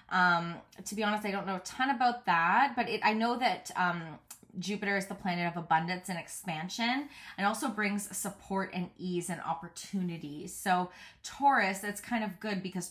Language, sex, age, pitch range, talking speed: English, female, 20-39, 170-205 Hz, 185 wpm